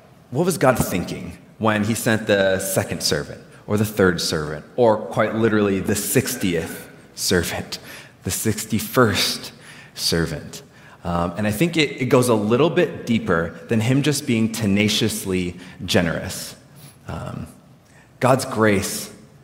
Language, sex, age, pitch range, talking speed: English, male, 30-49, 100-125 Hz, 135 wpm